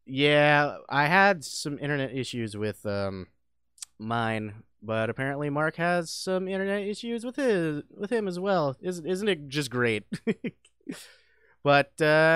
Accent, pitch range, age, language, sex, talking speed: American, 120-185 Hz, 30-49, English, male, 135 wpm